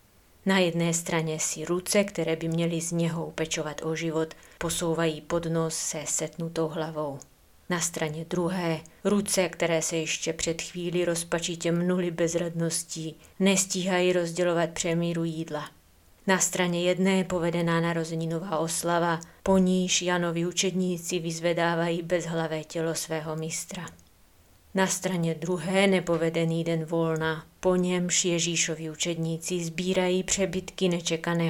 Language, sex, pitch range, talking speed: Czech, female, 160-175 Hz, 120 wpm